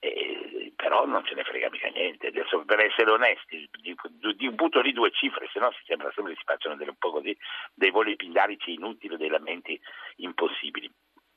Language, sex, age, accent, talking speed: Italian, male, 60-79, native, 180 wpm